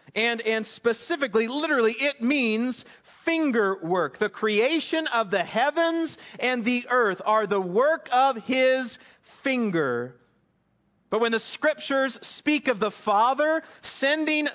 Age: 40-59